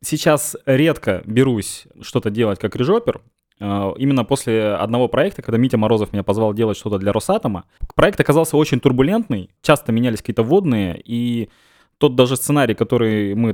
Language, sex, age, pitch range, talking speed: Russian, male, 20-39, 105-130 Hz, 150 wpm